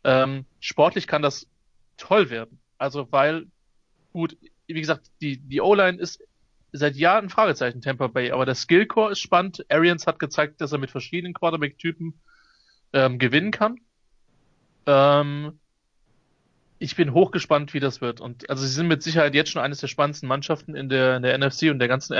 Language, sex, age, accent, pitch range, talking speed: German, male, 30-49, German, 135-165 Hz, 170 wpm